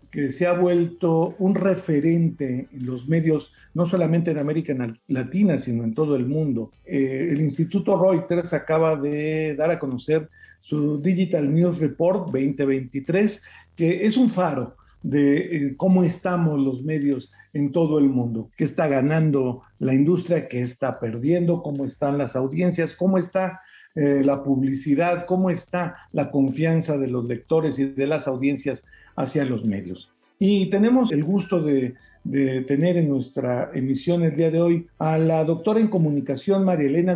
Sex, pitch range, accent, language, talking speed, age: male, 135-175 Hz, Mexican, Spanish, 160 wpm, 50-69